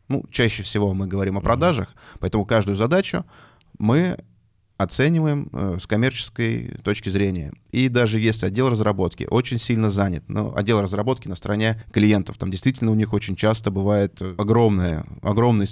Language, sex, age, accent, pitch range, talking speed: Russian, male, 20-39, native, 95-115 Hz, 155 wpm